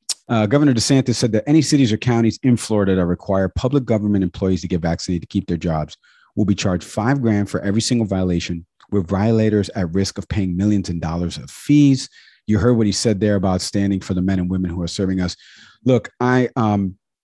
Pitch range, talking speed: 90-115 Hz, 220 wpm